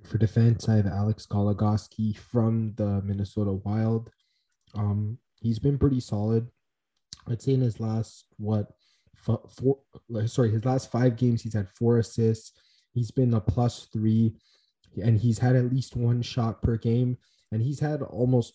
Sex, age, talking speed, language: male, 20-39, 160 wpm, English